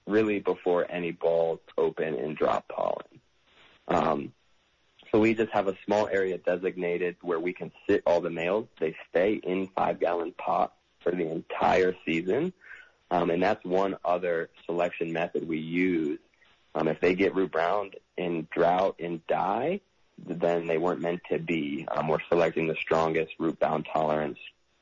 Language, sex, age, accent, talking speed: English, male, 30-49, American, 155 wpm